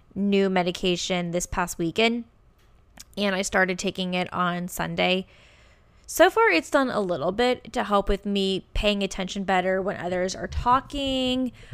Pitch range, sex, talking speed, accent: 180-220 Hz, female, 155 wpm, American